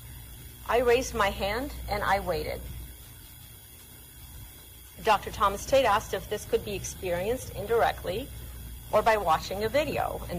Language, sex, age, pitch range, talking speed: English, female, 40-59, 170-240 Hz, 135 wpm